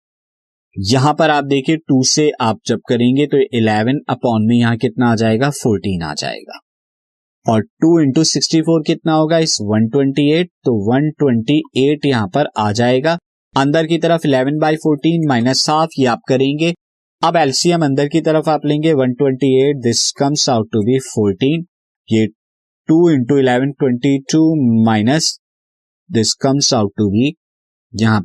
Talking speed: 160 wpm